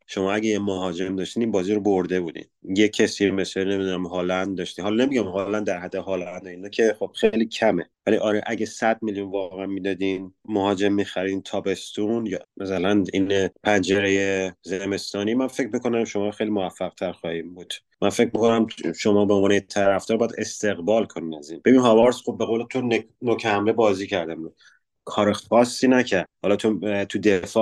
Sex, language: male, Persian